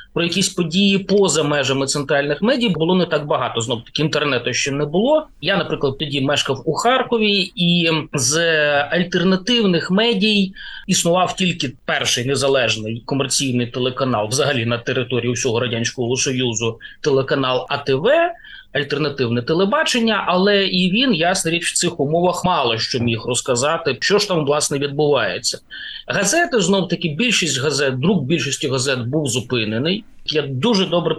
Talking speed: 140 wpm